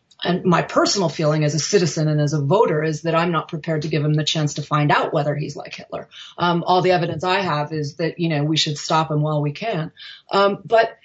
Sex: female